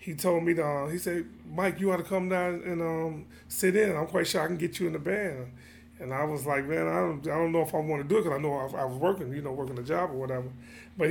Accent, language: American, English